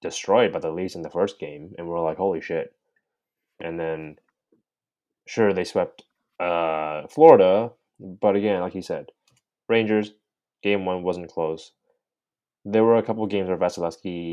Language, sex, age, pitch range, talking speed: English, male, 20-39, 85-105 Hz, 155 wpm